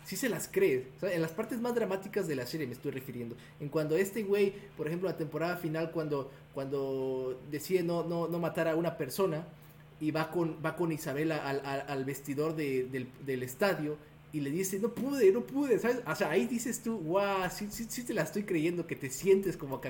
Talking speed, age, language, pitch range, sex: 230 wpm, 30-49, Spanish, 145-185 Hz, male